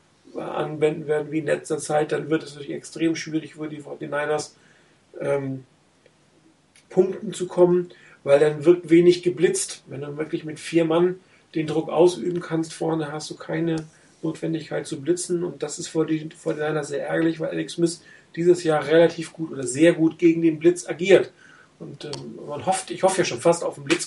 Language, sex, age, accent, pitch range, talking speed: German, male, 40-59, German, 155-175 Hz, 190 wpm